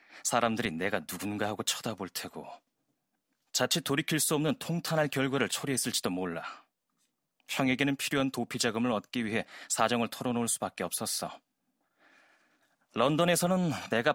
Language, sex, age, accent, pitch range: Korean, male, 30-49, native, 110-150 Hz